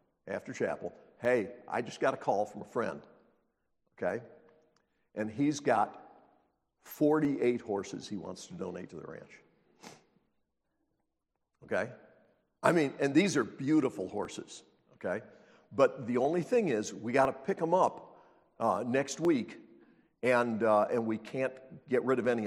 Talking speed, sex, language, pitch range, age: 150 wpm, male, English, 100-140 Hz, 60-79